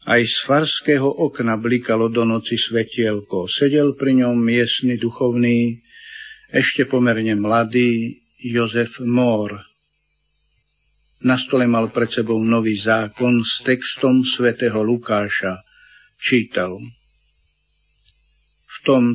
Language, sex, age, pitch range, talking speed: Slovak, male, 60-79, 115-130 Hz, 100 wpm